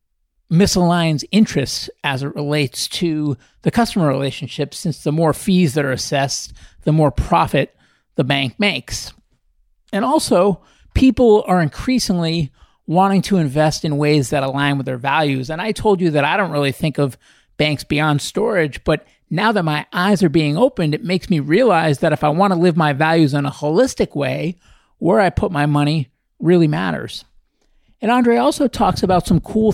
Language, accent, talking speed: English, American, 180 wpm